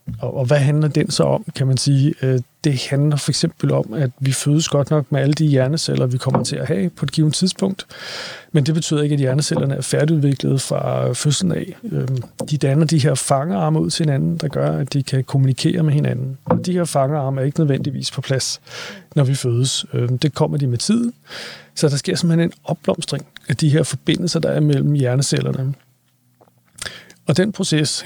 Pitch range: 135-165 Hz